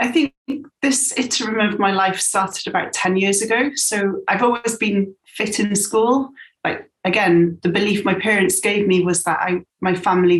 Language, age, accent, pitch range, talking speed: English, 30-49, British, 180-225 Hz, 185 wpm